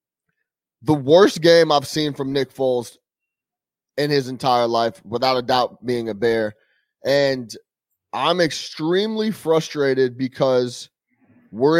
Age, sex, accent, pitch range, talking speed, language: 30-49, male, American, 125-150 Hz, 120 wpm, English